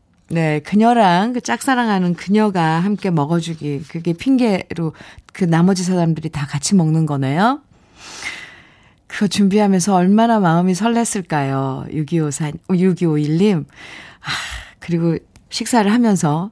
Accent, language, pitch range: native, Korean, 170-215 Hz